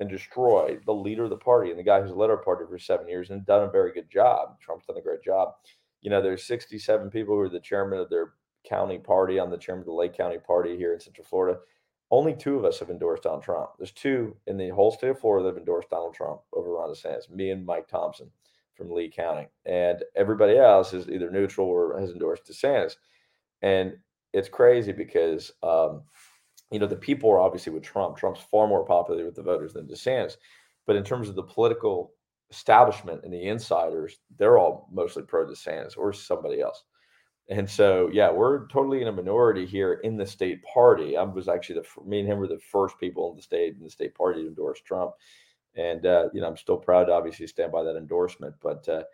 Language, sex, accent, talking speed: English, male, American, 220 wpm